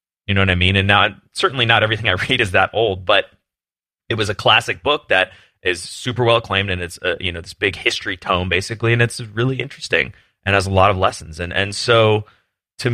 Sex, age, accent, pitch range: male, 30-49, American, 90-115 Hz